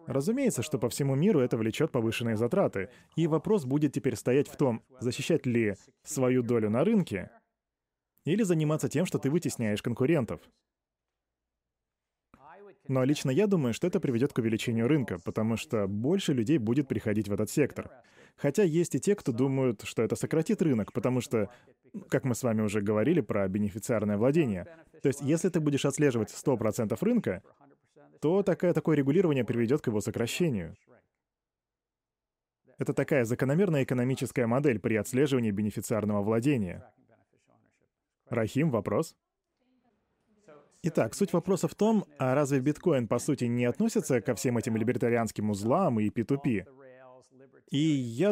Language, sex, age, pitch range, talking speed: Russian, male, 20-39, 115-155 Hz, 145 wpm